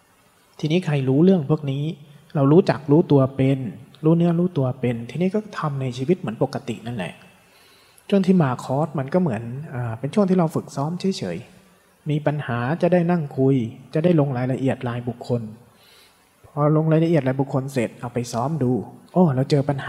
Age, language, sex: 20-39, Thai, male